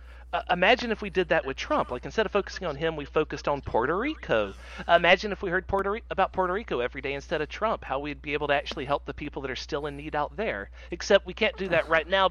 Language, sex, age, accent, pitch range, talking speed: English, male, 40-59, American, 130-195 Hz, 260 wpm